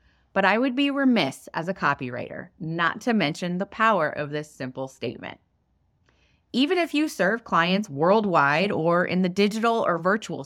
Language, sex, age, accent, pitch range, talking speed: English, female, 30-49, American, 160-245 Hz, 165 wpm